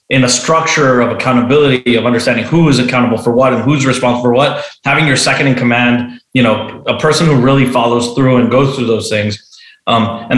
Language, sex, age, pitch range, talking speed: English, male, 30-49, 120-155 Hz, 215 wpm